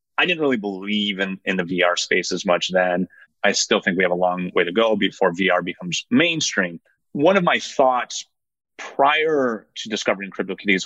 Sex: male